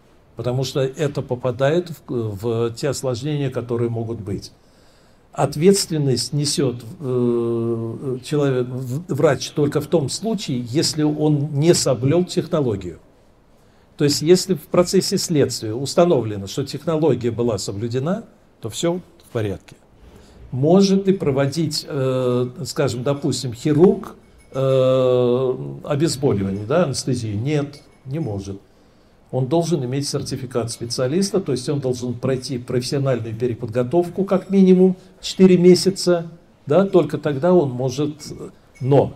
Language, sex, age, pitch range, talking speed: Russian, male, 60-79, 125-165 Hz, 115 wpm